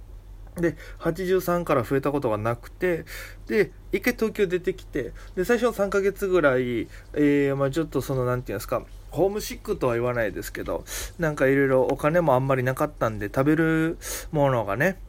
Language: Japanese